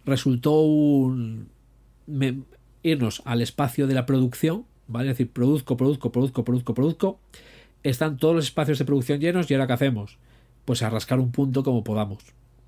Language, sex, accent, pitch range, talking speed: Spanish, male, Spanish, 120-145 Hz, 155 wpm